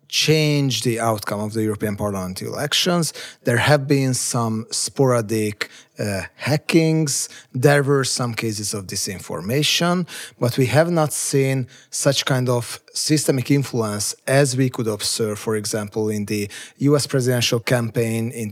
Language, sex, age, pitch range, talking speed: Hungarian, male, 30-49, 115-145 Hz, 140 wpm